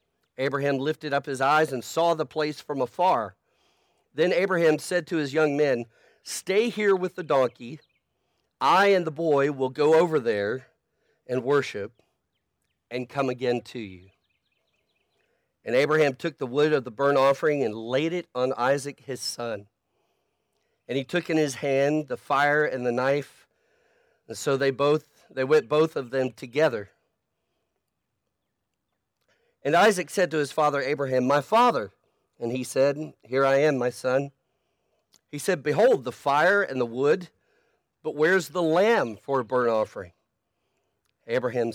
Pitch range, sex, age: 125-155 Hz, male, 40-59